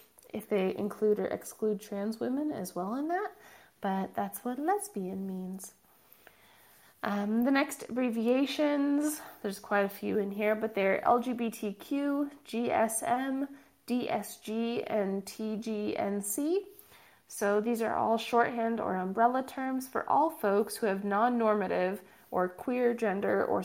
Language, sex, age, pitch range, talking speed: English, female, 20-39, 195-235 Hz, 130 wpm